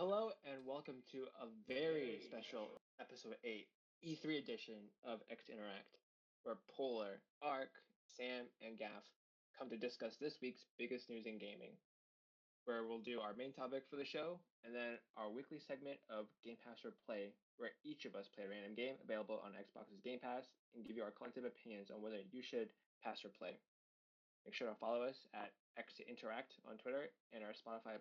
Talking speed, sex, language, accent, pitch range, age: 185 wpm, male, English, American, 110-135 Hz, 20-39